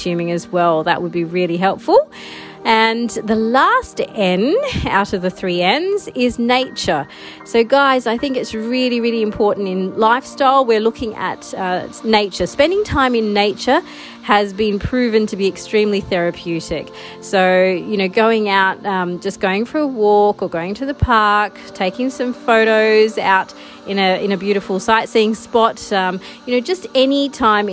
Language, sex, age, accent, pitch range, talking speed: English, female, 30-49, Australian, 190-230 Hz, 170 wpm